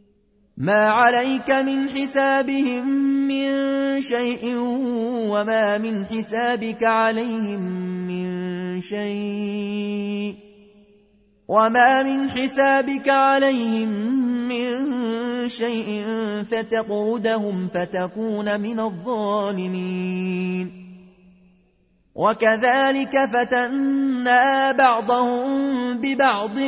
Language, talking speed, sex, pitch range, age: Arabic, 60 wpm, male, 205-250 Hz, 30-49